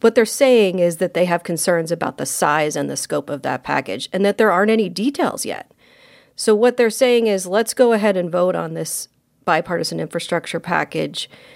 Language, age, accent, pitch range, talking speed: English, 40-59, American, 170-200 Hz, 200 wpm